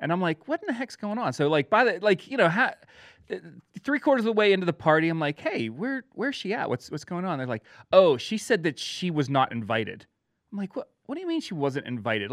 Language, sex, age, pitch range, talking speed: English, male, 30-49, 130-190 Hz, 275 wpm